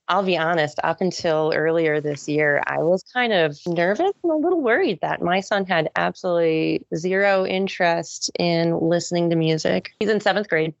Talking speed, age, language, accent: 180 wpm, 30-49, English, American